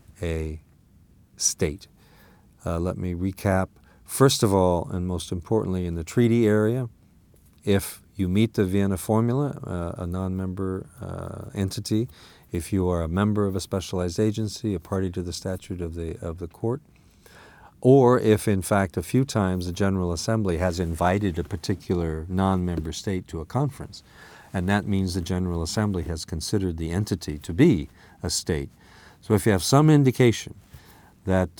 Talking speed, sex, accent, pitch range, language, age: 165 wpm, male, American, 90-105 Hz, English, 50-69